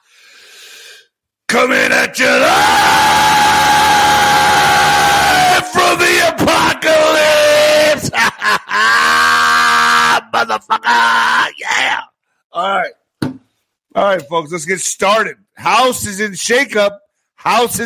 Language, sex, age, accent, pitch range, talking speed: English, male, 50-69, American, 160-235 Hz, 75 wpm